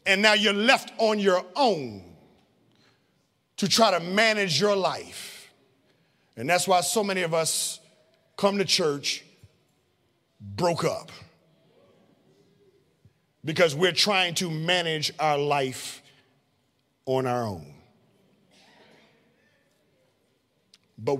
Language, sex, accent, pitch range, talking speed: English, male, American, 150-210 Hz, 100 wpm